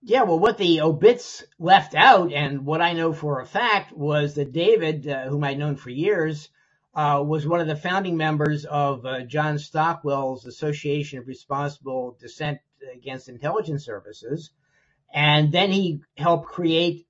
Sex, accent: male, American